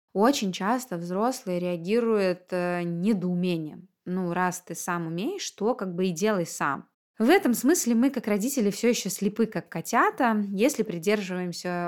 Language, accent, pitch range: Russian, native, 175-215 Hz